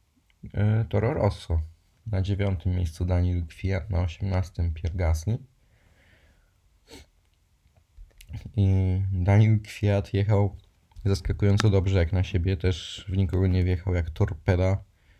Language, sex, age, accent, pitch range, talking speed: Polish, male, 20-39, native, 80-95 Hz, 105 wpm